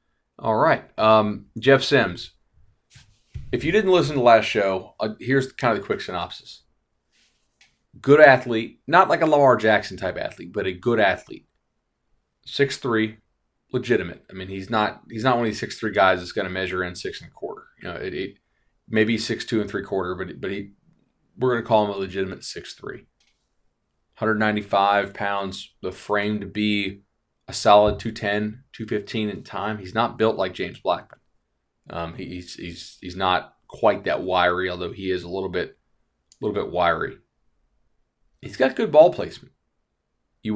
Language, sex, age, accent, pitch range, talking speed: English, male, 30-49, American, 95-120 Hz, 185 wpm